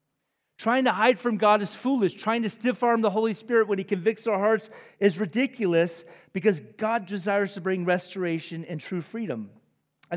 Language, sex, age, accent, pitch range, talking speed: English, male, 40-59, American, 155-225 Hz, 185 wpm